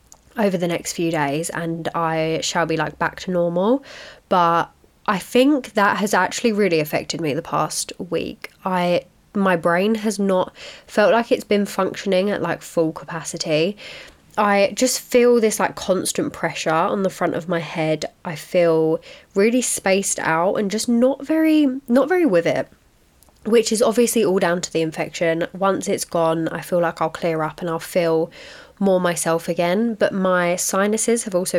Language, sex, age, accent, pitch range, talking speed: English, female, 10-29, British, 170-230 Hz, 175 wpm